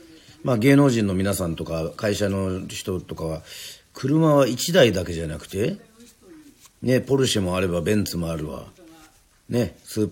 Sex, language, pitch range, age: male, Japanese, 90-150 Hz, 40-59